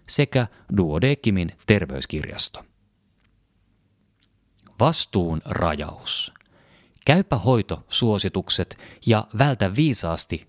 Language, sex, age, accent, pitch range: Finnish, male, 30-49, native, 90-115 Hz